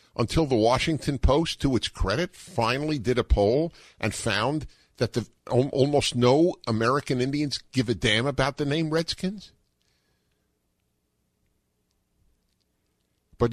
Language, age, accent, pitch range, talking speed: English, 50-69, American, 85-130 Hz, 120 wpm